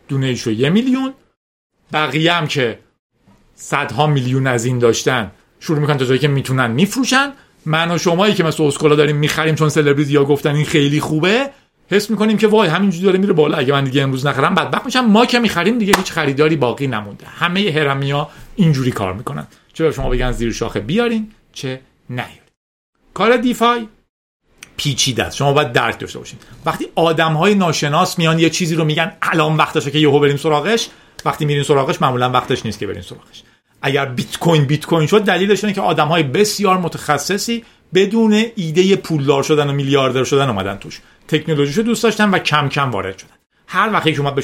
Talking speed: 180 wpm